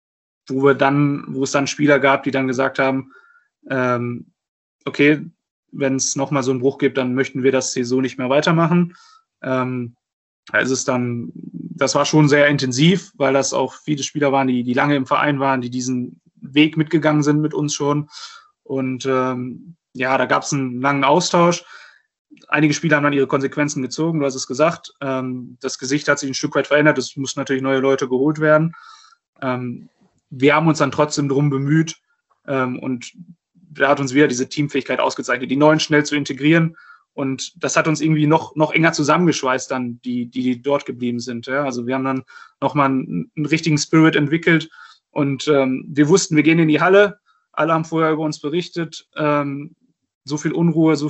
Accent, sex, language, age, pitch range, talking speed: German, male, German, 20-39, 130-155 Hz, 195 wpm